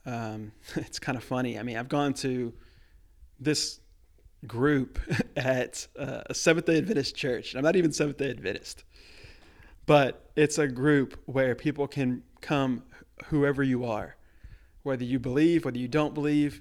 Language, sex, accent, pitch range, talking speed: English, male, American, 90-145 Hz, 150 wpm